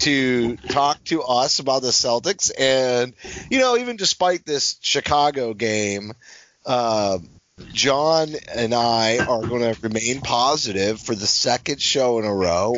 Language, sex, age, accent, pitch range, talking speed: English, male, 30-49, American, 100-130 Hz, 145 wpm